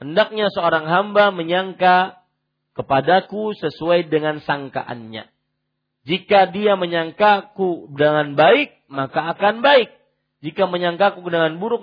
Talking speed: 100 wpm